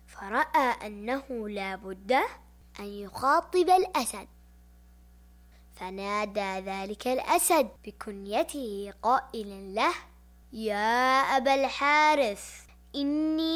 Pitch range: 195-280 Hz